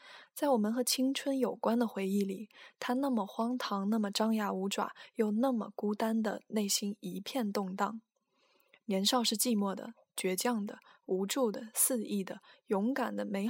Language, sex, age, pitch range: Chinese, female, 20-39, 205-255 Hz